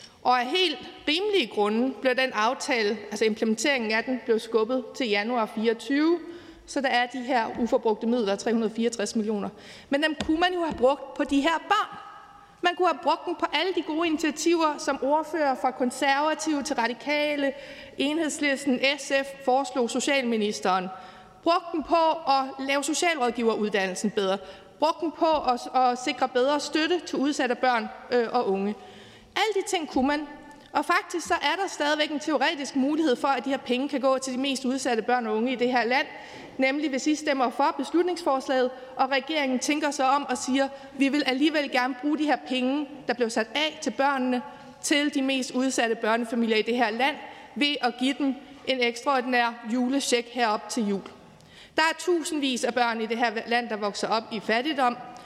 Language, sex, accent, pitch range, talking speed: Danish, female, native, 240-295 Hz, 180 wpm